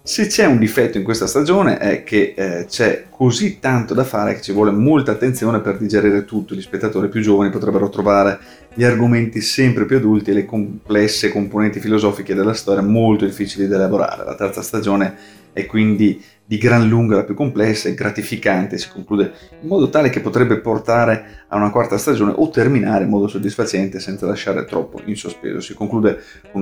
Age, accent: 30-49, native